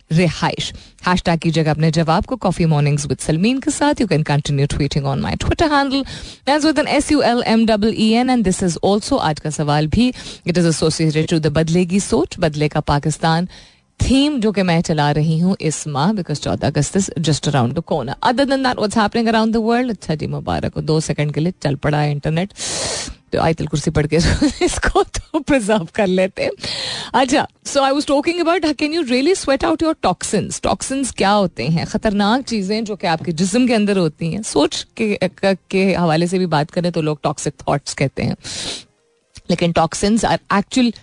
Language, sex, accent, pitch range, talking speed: Hindi, female, native, 160-230 Hz, 165 wpm